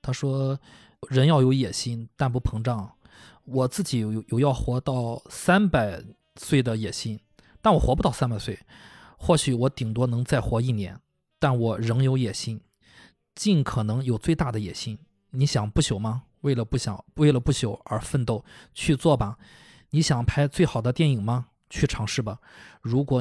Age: 20-39